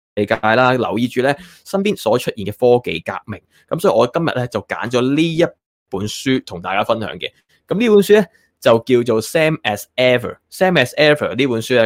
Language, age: Chinese, 20-39